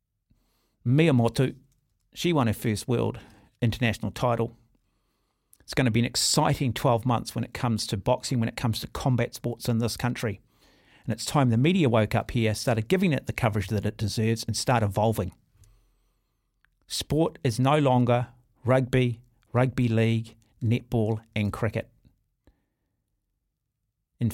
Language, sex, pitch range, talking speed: English, male, 110-130 Hz, 150 wpm